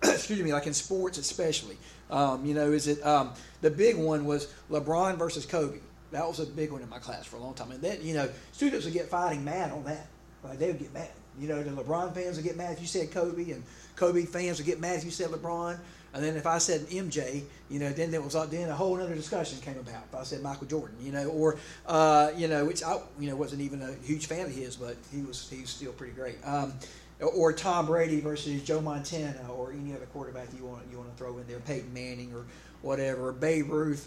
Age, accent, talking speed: 40-59, American, 250 wpm